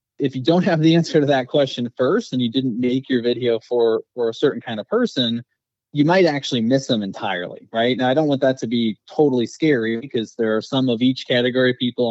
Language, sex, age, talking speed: English, male, 20-39, 240 wpm